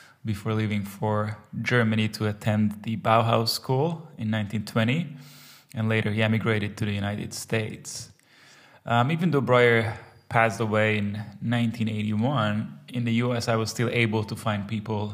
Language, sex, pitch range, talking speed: English, male, 105-125 Hz, 145 wpm